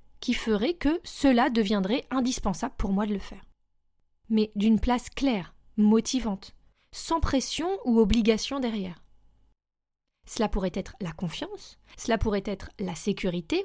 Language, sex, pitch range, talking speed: French, female, 200-260 Hz, 135 wpm